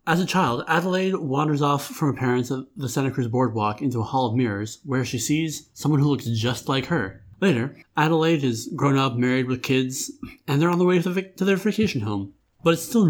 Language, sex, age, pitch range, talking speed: English, male, 30-49, 120-155 Hz, 220 wpm